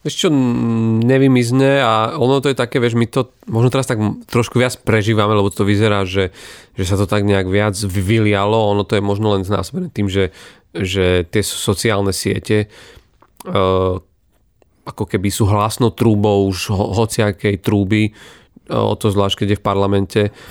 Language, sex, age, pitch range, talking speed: Slovak, male, 30-49, 100-120 Hz, 165 wpm